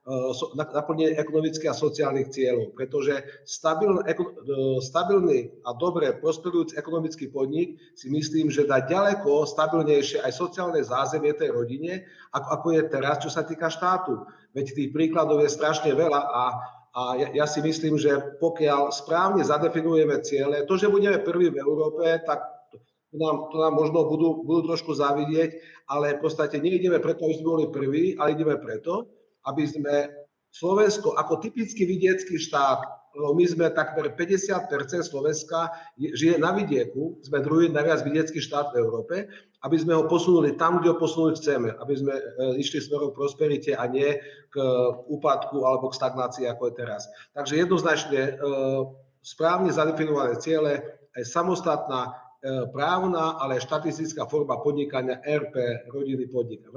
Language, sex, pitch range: Slovak, male, 140-165 Hz